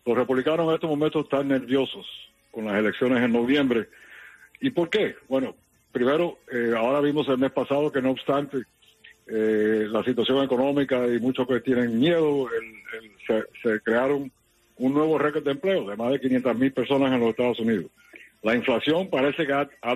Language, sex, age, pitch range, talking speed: English, male, 60-79, 120-150 Hz, 175 wpm